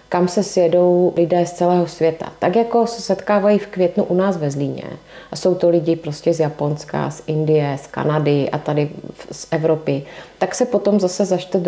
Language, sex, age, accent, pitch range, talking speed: Czech, female, 30-49, native, 160-180 Hz, 195 wpm